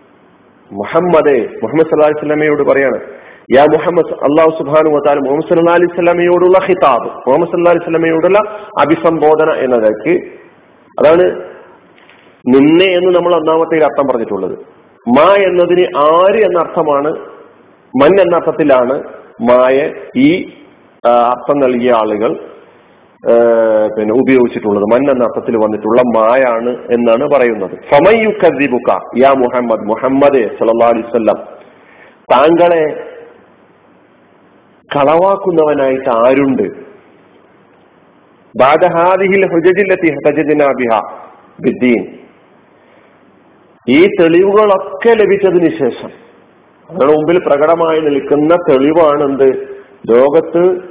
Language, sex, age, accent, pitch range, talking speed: Malayalam, male, 40-59, native, 130-180 Hz, 70 wpm